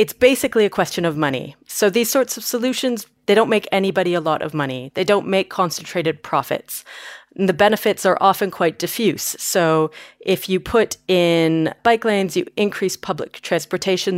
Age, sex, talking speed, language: 30-49, female, 175 wpm, English